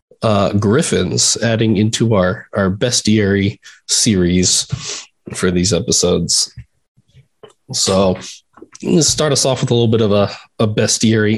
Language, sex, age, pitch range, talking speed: English, male, 20-39, 115-150 Hz, 125 wpm